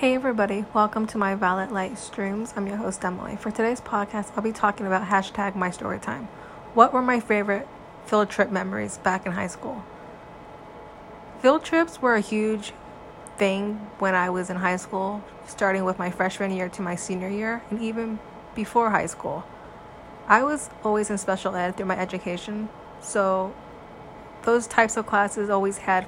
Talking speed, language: 175 wpm, English